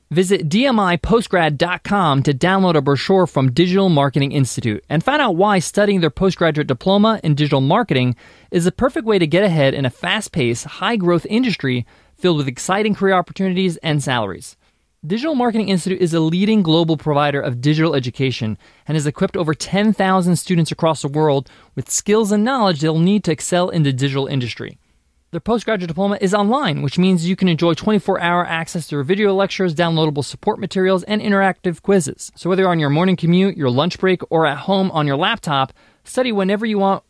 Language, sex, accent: English, male, American